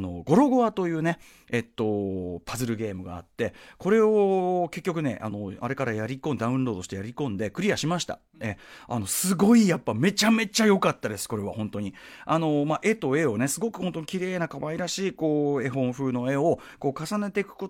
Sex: male